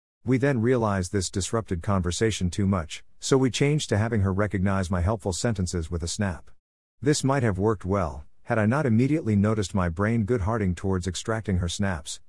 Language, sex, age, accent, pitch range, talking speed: English, male, 50-69, American, 90-115 Hz, 185 wpm